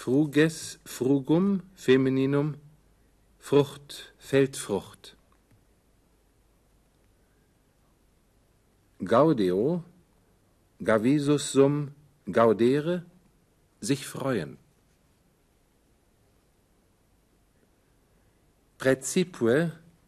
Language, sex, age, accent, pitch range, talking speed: German, male, 60-79, German, 110-155 Hz, 35 wpm